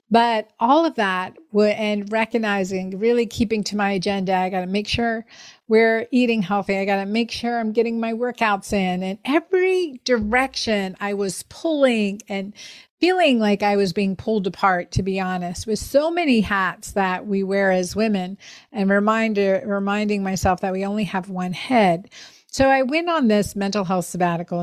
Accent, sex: American, female